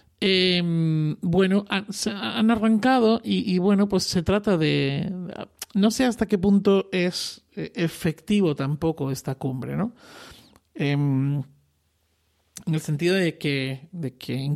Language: Spanish